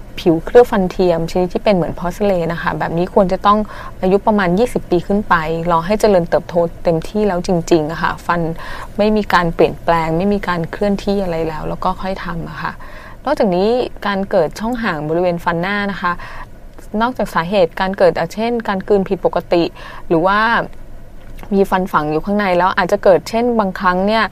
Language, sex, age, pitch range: English, female, 20-39, 170-205 Hz